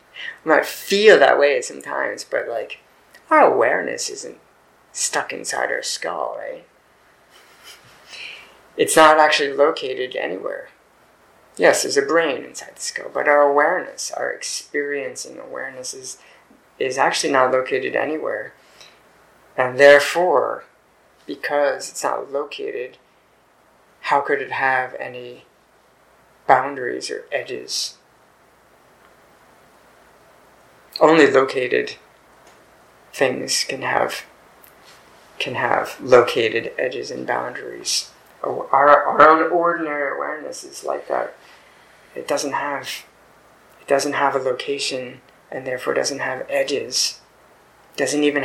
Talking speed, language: 115 wpm, English